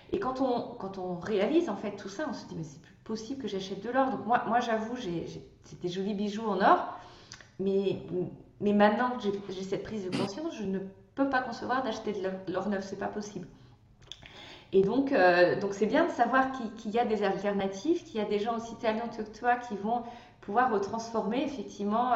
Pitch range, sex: 185-240 Hz, female